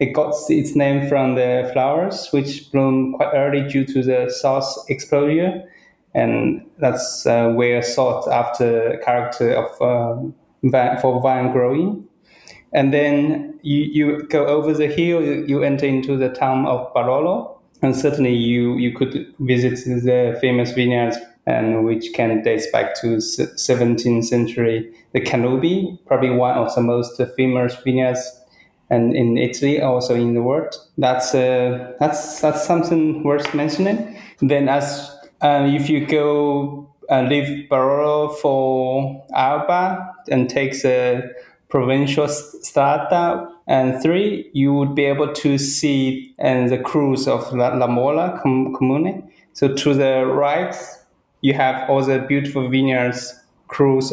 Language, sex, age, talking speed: English, male, 20-39, 140 wpm